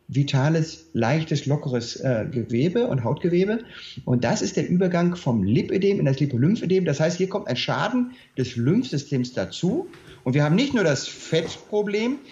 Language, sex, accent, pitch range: German, male, German, 135-190 Hz